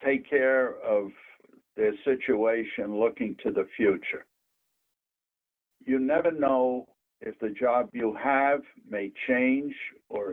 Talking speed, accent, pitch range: 115 wpm, American, 125-195 Hz